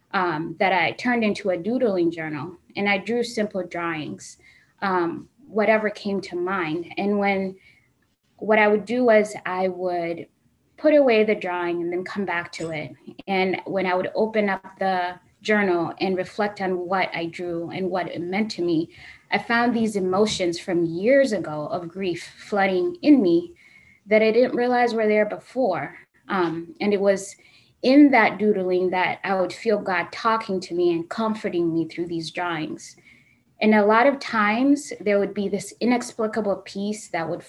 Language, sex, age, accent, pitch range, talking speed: English, female, 10-29, American, 175-220 Hz, 175 wpm